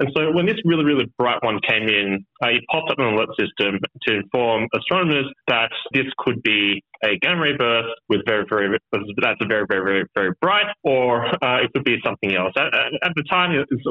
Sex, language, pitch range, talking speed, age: male, English, 100-140 Hz, 215 wpm, 20-39